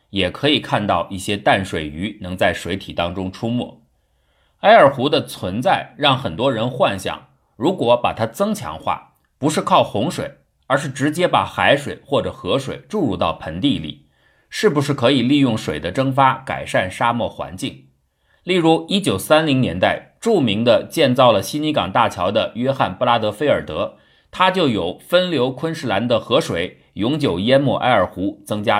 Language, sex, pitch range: Chinese, male, 100-150 Hz